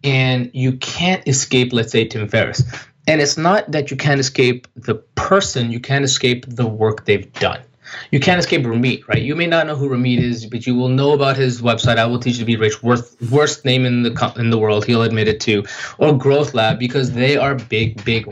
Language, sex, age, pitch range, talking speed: English, male, 20-39, 115-140 Hz, 230 wpm